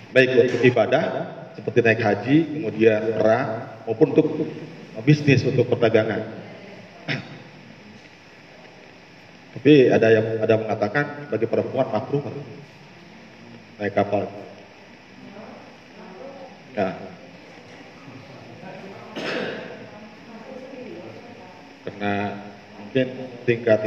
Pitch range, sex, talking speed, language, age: 115-160 Hz, male, 70 wpm, Malay, 40-59